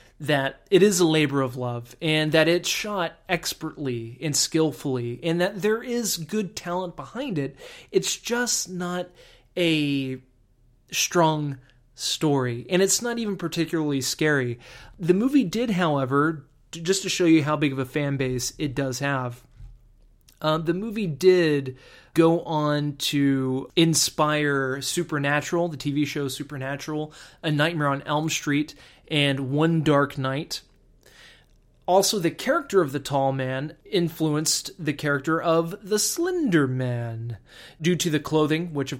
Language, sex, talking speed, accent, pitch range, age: English, male, 145 wpm, American, 135-170 Hz, 20-39